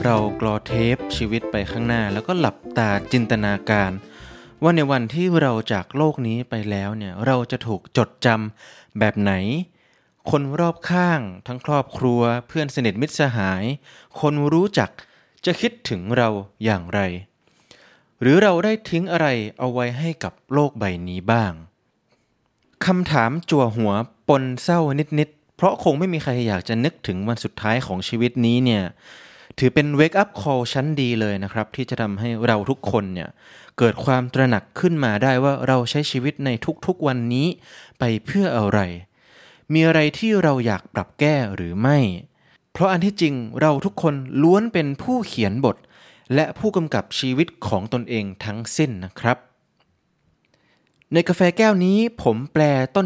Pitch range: 110-155 Hz